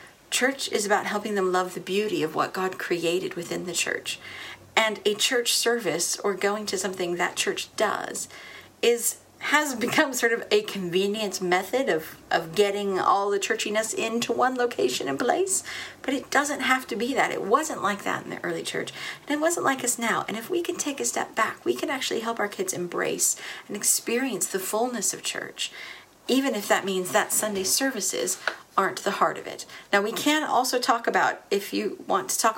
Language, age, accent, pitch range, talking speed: English, 40-59, American, 200-275 Hz, 205 wpm